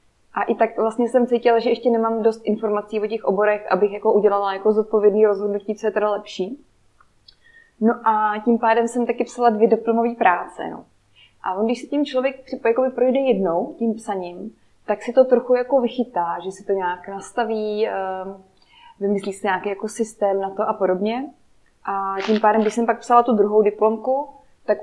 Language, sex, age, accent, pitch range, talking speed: Czech, female, 20-39, native, 195-235 Hz, 180 wpm